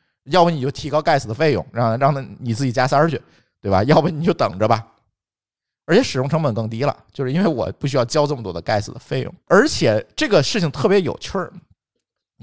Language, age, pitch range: Chinese, 50-69, 110-175 Hz